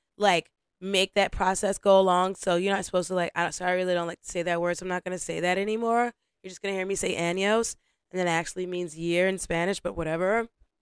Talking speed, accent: 255 wpm, American